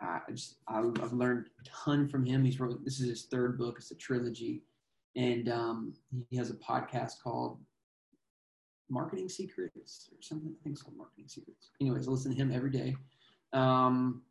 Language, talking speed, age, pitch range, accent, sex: English, 180 wpm, 20-39, 120-140 Hz, American, male